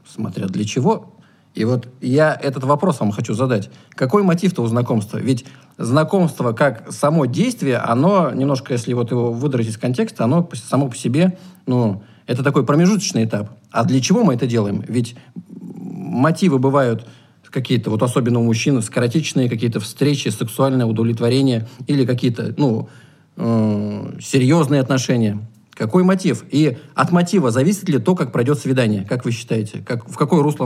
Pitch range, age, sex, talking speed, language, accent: 115-155 Hz, 40-59, male, 160 wpm, Russian, native